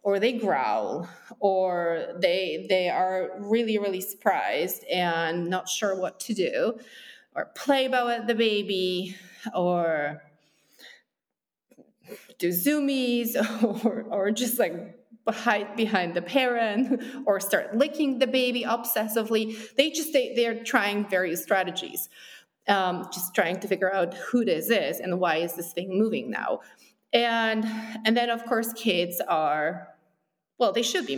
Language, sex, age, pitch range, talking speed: English, female, 30-49, 185-245 Hz, 140 wpm